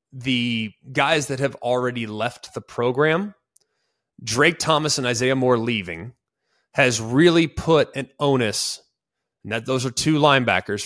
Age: 30-49